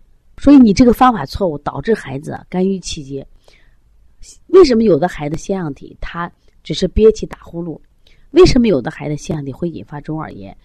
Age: 30-49